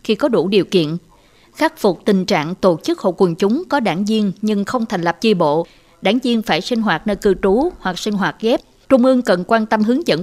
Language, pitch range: Vietnamese, 180-235 Hz